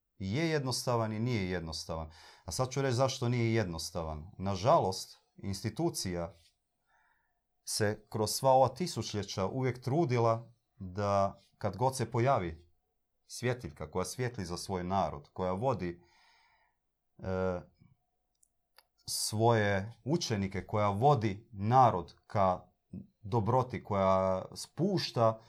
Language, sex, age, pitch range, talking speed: Croatian, male, 30-49, 90-115 Hz, 105 wpm